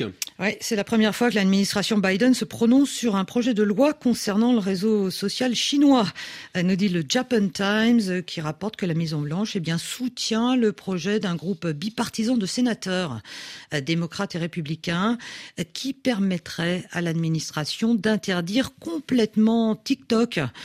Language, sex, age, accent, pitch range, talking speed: French, female, 50-69, French, 170-225 Hz, 150 wpm